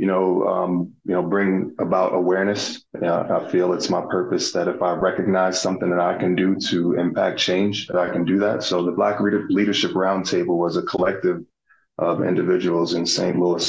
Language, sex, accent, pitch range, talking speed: English, male, American, 90-95 Hz, 200 wpm